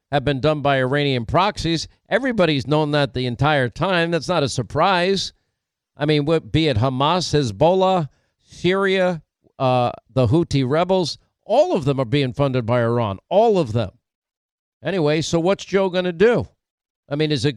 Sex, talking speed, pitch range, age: male, 165 wpm, 135-165 Hz, 50-69